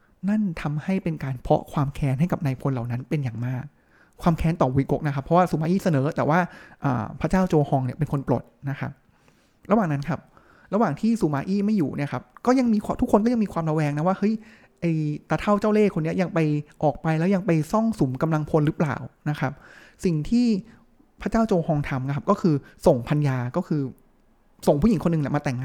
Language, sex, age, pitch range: Thai, male, 20-39, 140-185 Hz